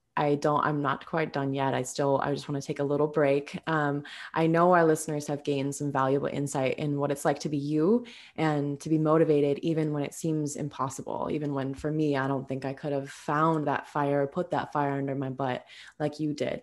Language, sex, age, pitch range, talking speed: English, female, 20-39, 145-185 Hz, 235 wpm